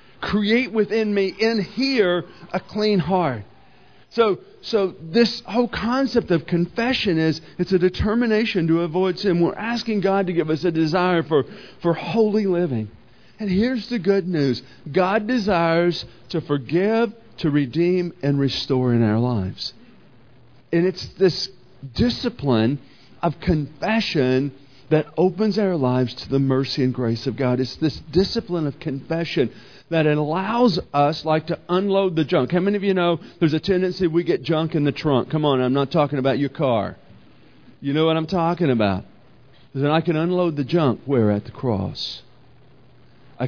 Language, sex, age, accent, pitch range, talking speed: English, male, 50-69, American, 125-180 Hz, 165 wpm